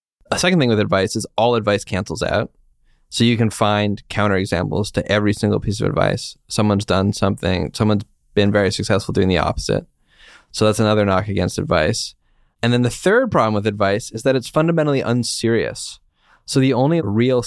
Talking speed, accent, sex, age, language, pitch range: 180 wpm, American, male, 10-29, English, 100-120 Hz